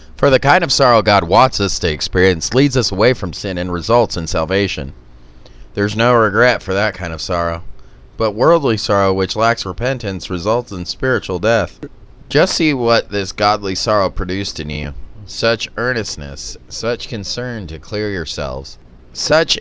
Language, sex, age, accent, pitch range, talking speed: English, male, 30-49, American, 90-120 Hz, 165 wpm